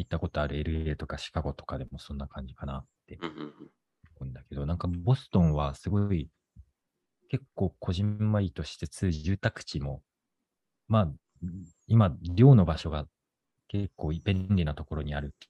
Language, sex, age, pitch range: Japanese, male, 40-59, 75-95 Hz